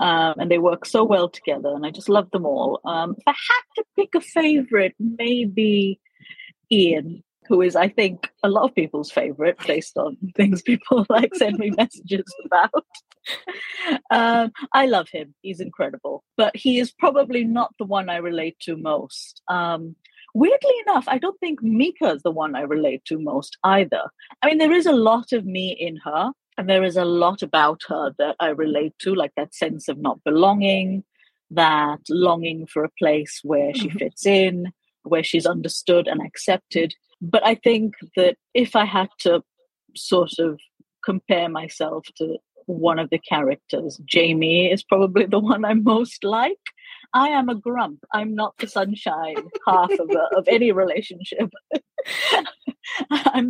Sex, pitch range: female, 175-255 Hz